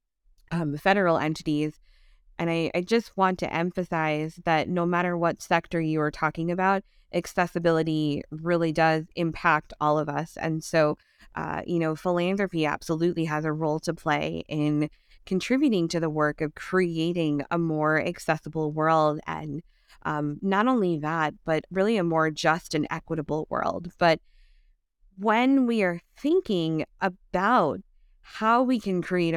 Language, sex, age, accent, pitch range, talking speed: English, female, 20-39, American, 155-185 Hz, 145 wpm